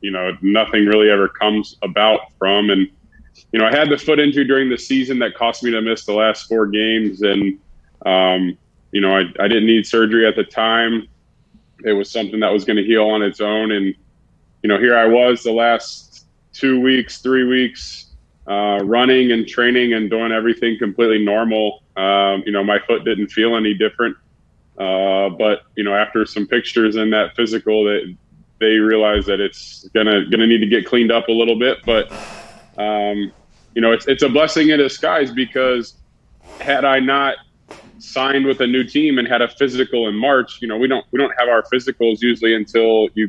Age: 30-49